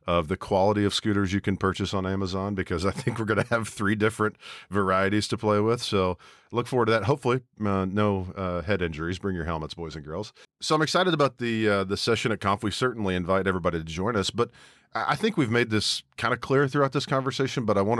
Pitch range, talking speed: 90-115 Hz, 240 wpm